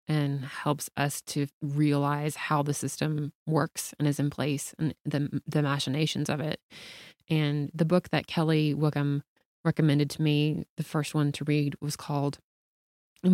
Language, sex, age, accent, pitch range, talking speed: English, female, 20-39, American, 145-165 Hz, 155 wpm